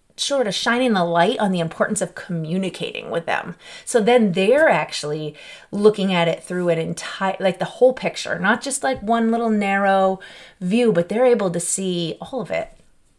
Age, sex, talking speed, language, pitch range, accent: 30-49, female, 185 wpm, English, 170-220 Hz, American